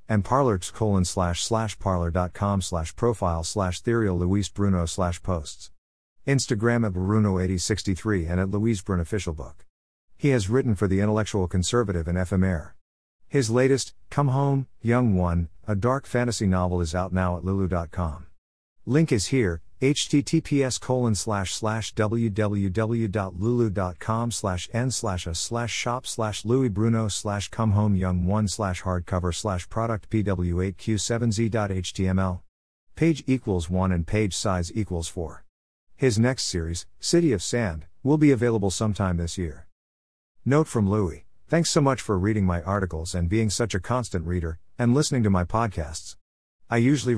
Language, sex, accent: English, male, American